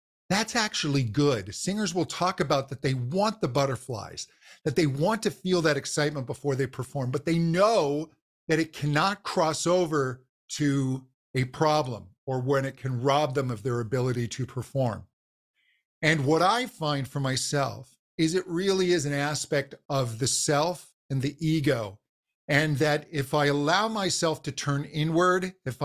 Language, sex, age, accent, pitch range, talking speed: English, male, 50-69, American, 135-165 Hz, 165 wpm